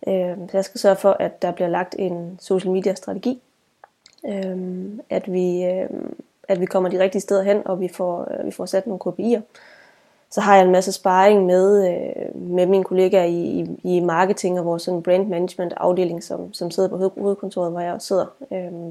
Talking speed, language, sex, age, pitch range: 195 wpm, Danish, female, 20-39, 175-195 Hz